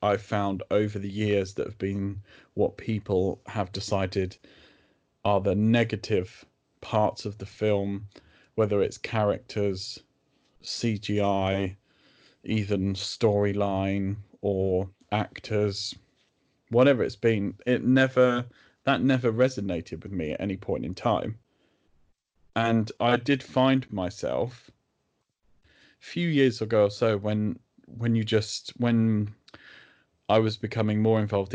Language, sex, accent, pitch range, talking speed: English, male, British, 100-125 Hz, 120 wpm